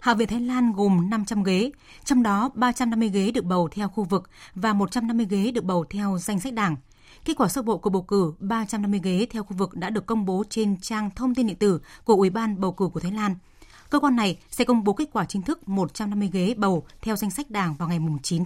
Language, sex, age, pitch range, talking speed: Vietnamese, female, 20-39, 185-230 Hz, 245 wpm